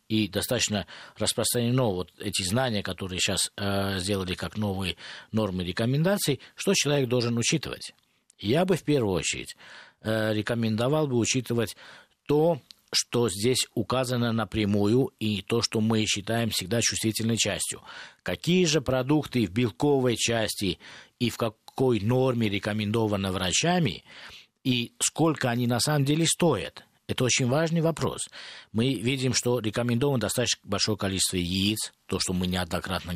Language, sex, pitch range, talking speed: Russian, male, 105-130 Hz, 135 wpm